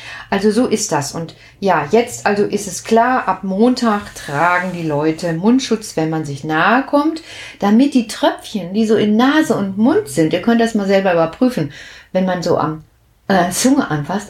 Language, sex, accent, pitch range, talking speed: German, female, German, 165-235 Hz, 190 wpm